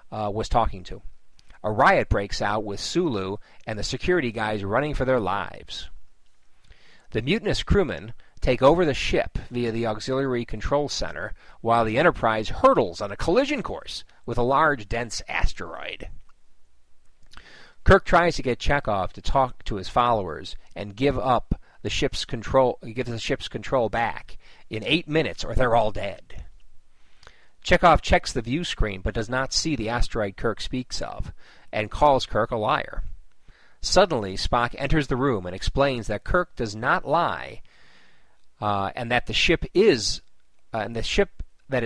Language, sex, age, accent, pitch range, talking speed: English, male, 40-59, American, 100-135 Hz, 160 wpm